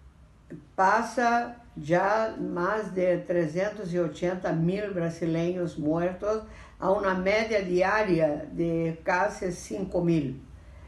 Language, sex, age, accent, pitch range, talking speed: Spanish, female, 60-79, American, 165-205 Hz, 90 wpm